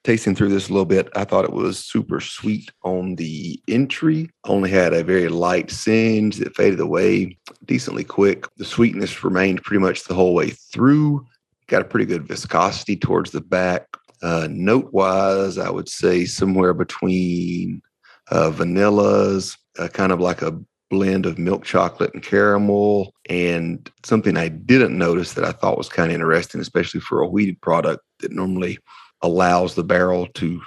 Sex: male